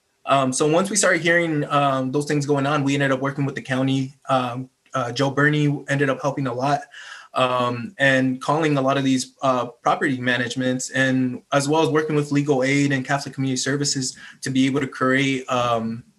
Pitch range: 130-145 Hz